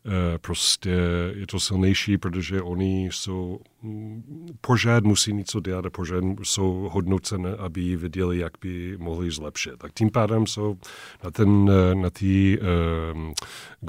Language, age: Czech, 40-59